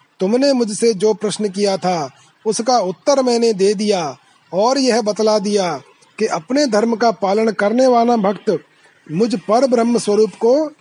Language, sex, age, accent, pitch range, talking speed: Hindi, male, 30-49, native, 195-230 Hz, 135 wpm